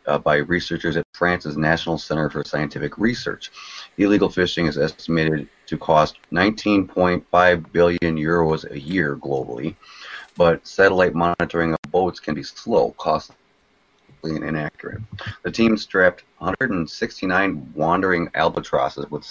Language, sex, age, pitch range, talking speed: English, male, 30-49, 75-95 Hz, 125 wpm